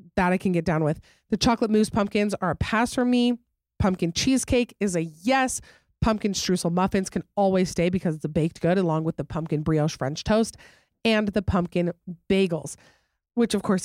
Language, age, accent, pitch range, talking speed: English, 30-49, American, 170-215 Hz, 195 wpm